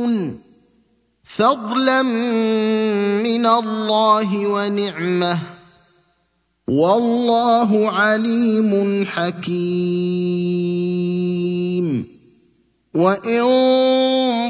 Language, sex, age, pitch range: Arabic, male, 30-49, 200-235 Hz